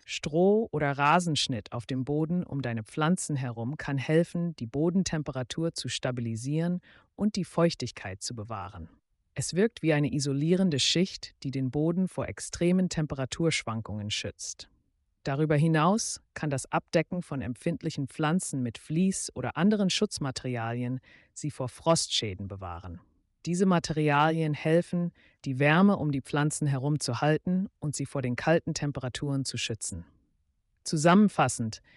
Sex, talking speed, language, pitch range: female, 135 wpm, German, 120-160 Hz